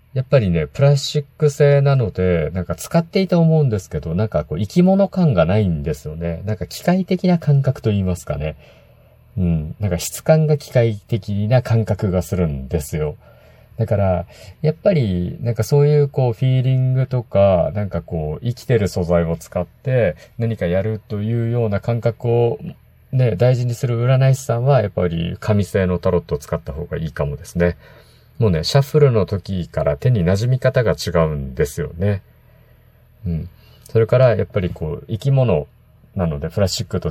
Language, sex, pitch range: Japanese, male, 90-130 Hz